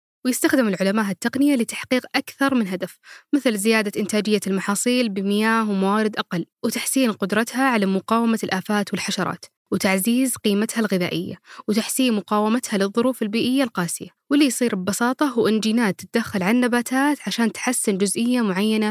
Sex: female